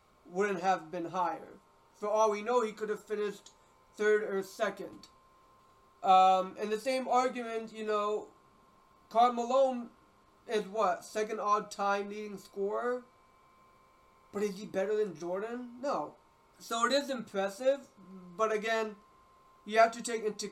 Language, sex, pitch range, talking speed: English, male, 185-225 Hz, 140 wpm